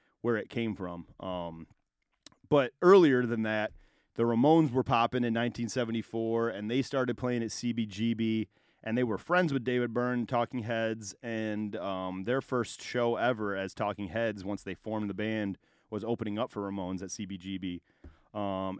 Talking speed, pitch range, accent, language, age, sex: 165 wpm, 105-130 Hz, American, English, 30-49, male